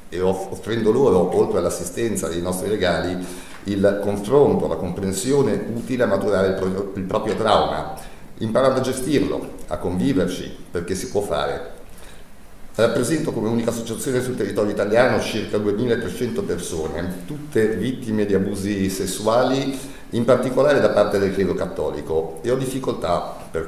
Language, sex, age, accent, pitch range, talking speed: Italian, male, 50-69, native, 95-125 Hz, 140 wpm